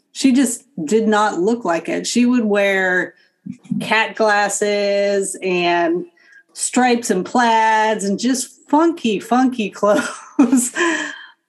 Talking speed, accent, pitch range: 110 wpm, American, 195-245 Hz